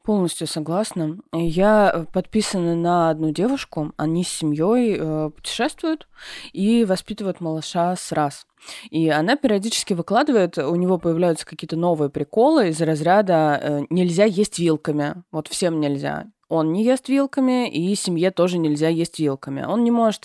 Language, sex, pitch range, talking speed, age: Russian, female, 150-195 Hz, 140 wpm, 20-39